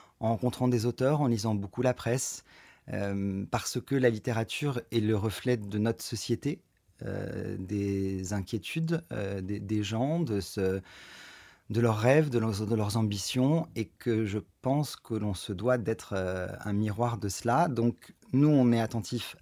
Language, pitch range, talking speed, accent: French, 105-125 Hz, 175 wpm, French